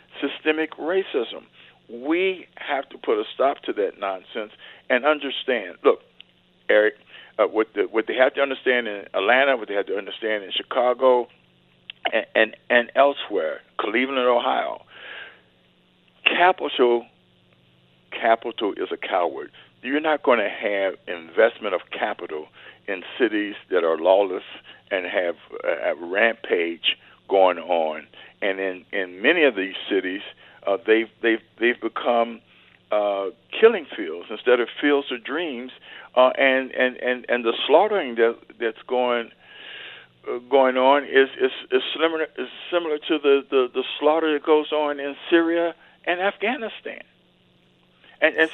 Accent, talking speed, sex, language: American, 145 wpm, male, English